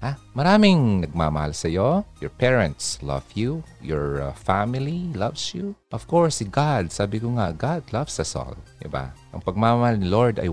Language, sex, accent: Filipino, male, native